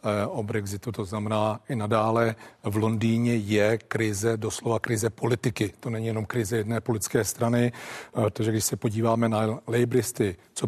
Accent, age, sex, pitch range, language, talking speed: native, 40-59, male, 115-130 Hz, Czech, 150 wpm